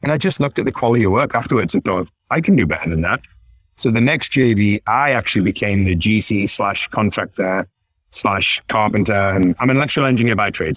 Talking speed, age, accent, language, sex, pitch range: 210 wpm, 30-49, British, English, male, 95-120 Hz